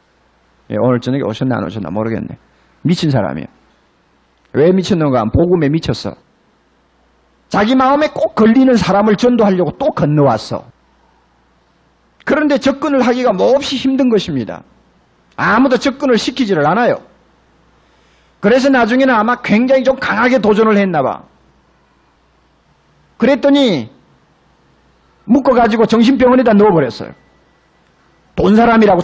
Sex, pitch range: male, 155-255 Hz